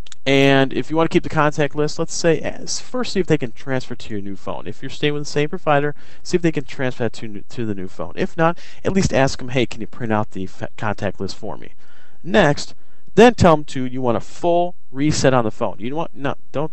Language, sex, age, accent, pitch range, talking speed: English, male, 30-49, American, 115-155 Hz, 275 wpm